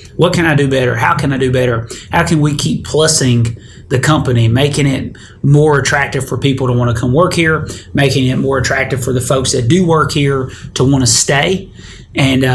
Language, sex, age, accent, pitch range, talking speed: English, male, 30-49, American, 125-150 Hz, 215 wpm